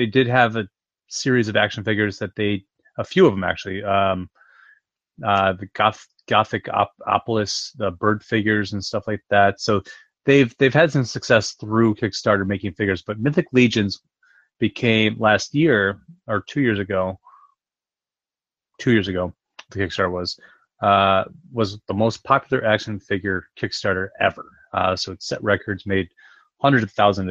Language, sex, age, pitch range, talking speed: English, male, 30-49, 95-115 Hz, 160 wpm